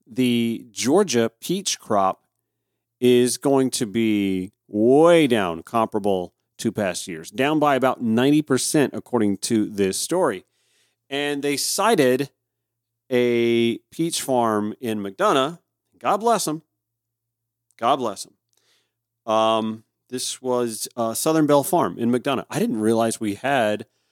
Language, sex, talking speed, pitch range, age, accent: English, male, 125 wpm, 110-140 Hz, 40-59, American